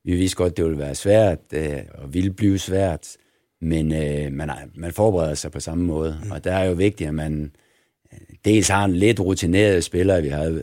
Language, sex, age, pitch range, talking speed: Danish, male, 60-79, 75-95 Hz, 190 wpm